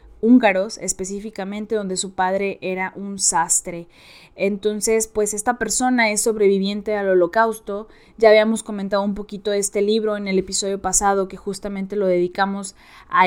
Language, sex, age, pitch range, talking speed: Spanish, female, 20-39, 190-210 Hz, 150 wpm